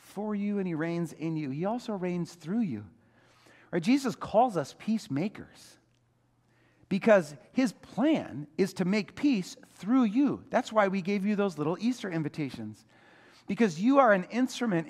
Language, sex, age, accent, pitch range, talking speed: English, male, 40-59, American, 140-220 Hz, 160 wpm